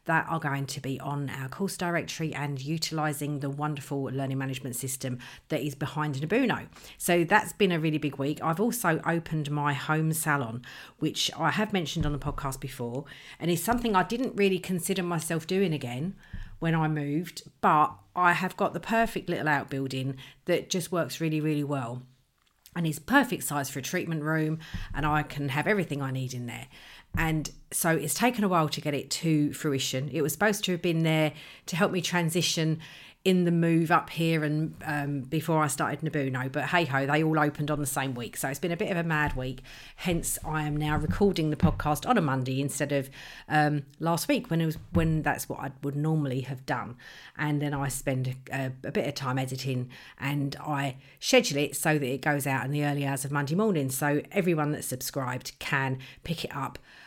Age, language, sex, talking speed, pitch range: 40-59, English, female, 205 wpm, 140-165 Hz